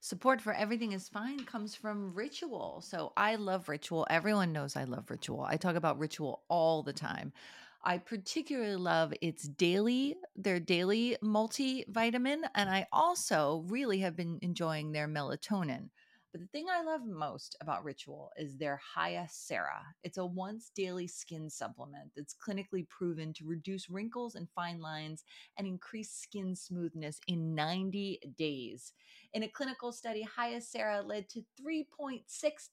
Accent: American